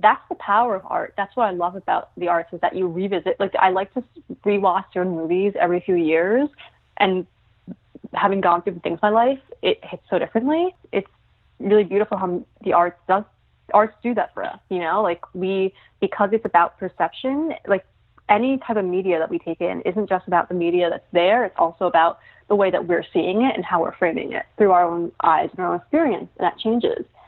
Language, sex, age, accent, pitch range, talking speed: English, female, 20-39, American, 175-225 Hz, 220 wpm